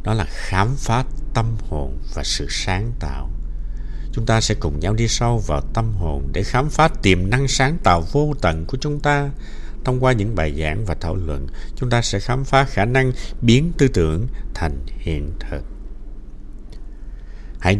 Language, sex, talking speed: Vietnamese, male, 180 wpm